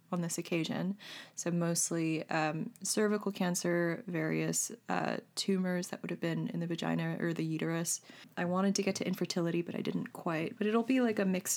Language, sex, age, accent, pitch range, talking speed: English, female, 20-39, American, 170-215 Hz, 190 wpm